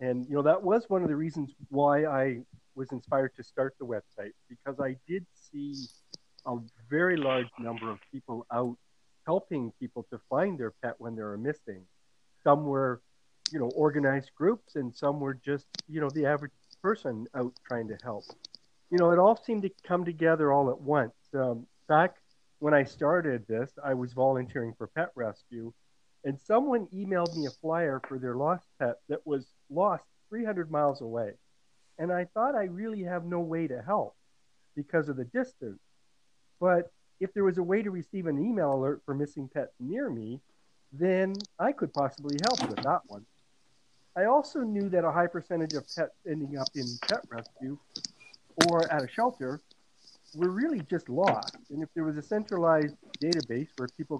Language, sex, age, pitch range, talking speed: English, male, 50-69, 125-170 Hz, 185 wpm